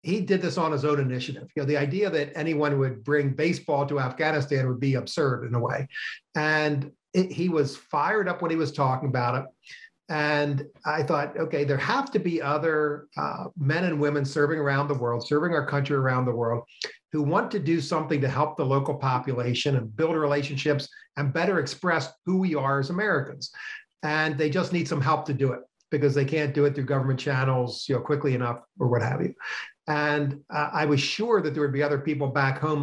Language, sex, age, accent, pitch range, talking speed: English, male, 50-69, American, 135-155 Hz, 215 wpm